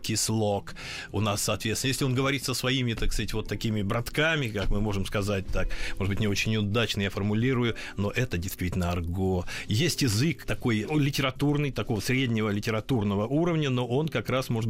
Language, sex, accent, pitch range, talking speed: Russian, male, native, 105-135 Hz, 175 wpm